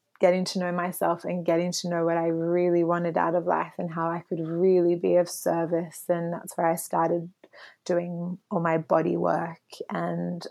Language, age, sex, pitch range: English, 20-39, female, 170-190 Hz